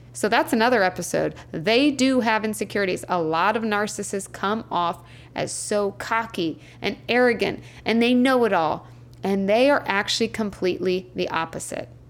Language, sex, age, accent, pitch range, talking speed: English, female, 20-39, American, 180-240 Hz, 155 wpm